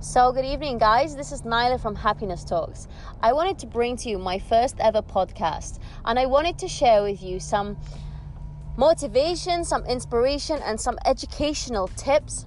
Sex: female